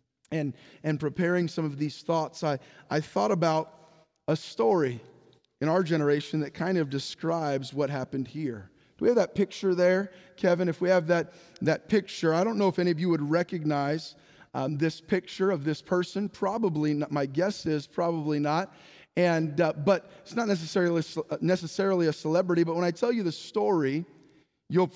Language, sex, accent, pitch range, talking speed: English, male, American, 150-185 Hz, 180 wpm